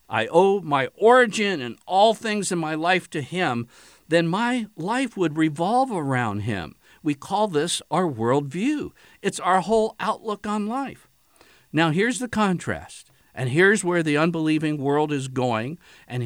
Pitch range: 105-170 Hz